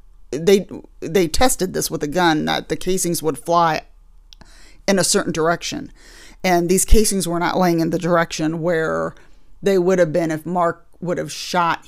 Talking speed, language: 175 wpm, English